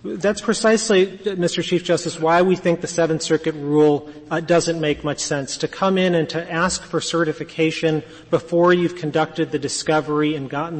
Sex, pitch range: male, 150-170 Hz